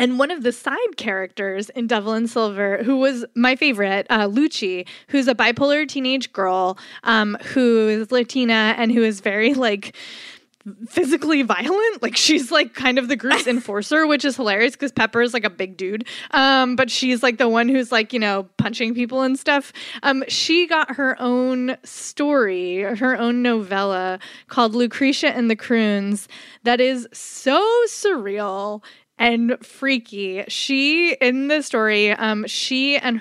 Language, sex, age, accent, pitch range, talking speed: English, female, 20-39, American, 220-275 Hz, 165 wpm